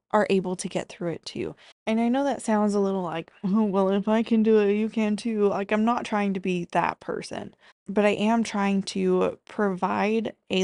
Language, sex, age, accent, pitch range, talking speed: English, female, 20-39, American, 175-200 Hz, 215 wpm